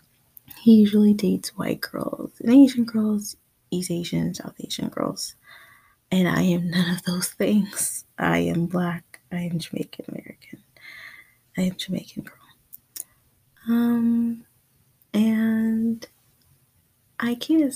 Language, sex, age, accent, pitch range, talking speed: English, female, 20-39, American, 170-225 Hz, 120 wpm